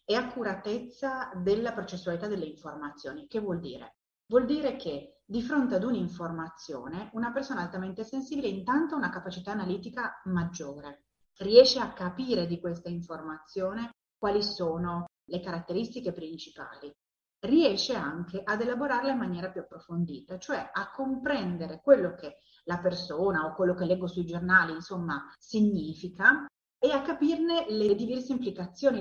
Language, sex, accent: Italian, female, native